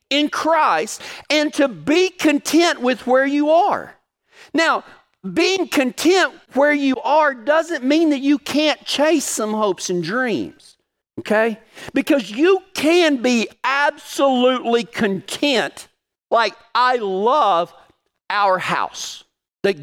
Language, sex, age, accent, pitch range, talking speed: English, male, 50-69, American, 180-295 Hz, 120 wpm